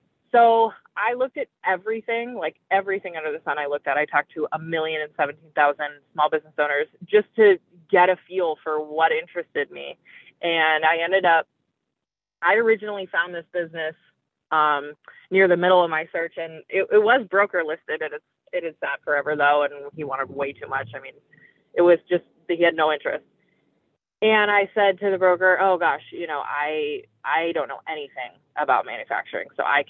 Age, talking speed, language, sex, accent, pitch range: 20-39, 190 wpm, English, female, American, 155-205 Hz